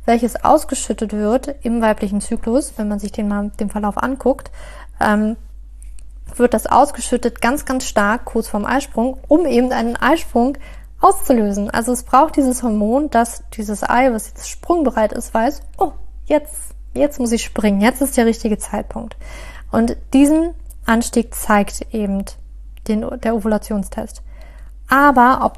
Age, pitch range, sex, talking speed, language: 20-39, 210-260 Hz, female, 150 wpm, German